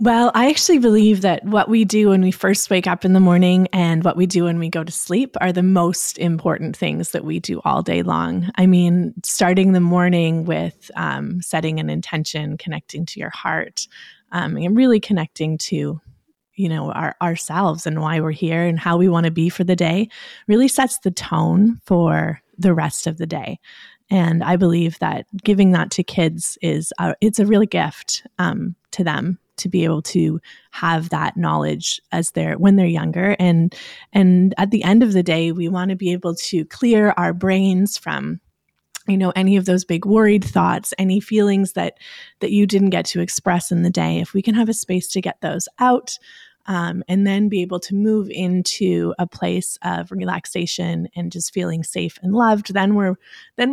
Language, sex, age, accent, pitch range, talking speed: English, female, 20-39, American, 170-200 Hz, 200 wpm